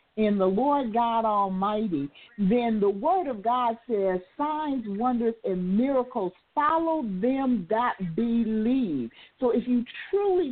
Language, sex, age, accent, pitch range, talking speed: English, female, 50-69, American, 210-275 Hz, 130 wpm